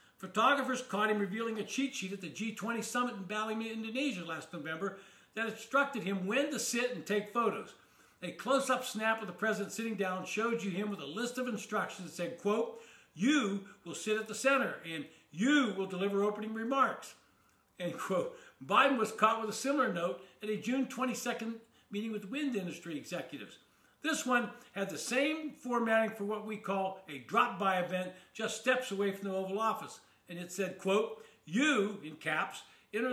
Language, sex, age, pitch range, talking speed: English, male, 60-79, 195-245 Hz, 185 wpm